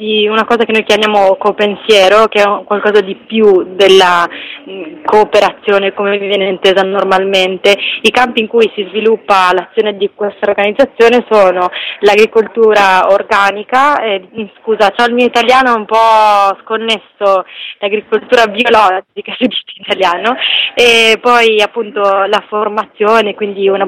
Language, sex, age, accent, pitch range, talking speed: Italian, female, 20-39, native, 195-220 Hz, 135 wpm